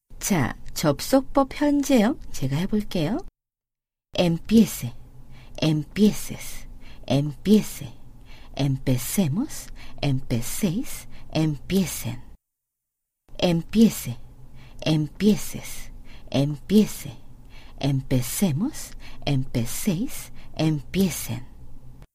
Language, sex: English, female